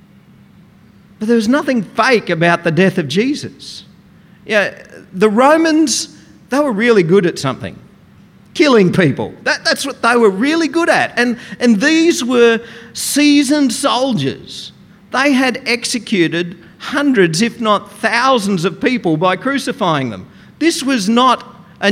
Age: 50-69